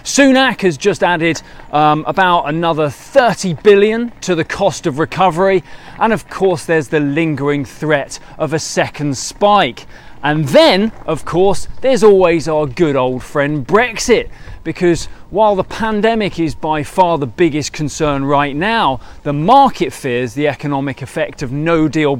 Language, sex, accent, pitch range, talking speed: English, male, British, 140-190 Hz, 155 wpm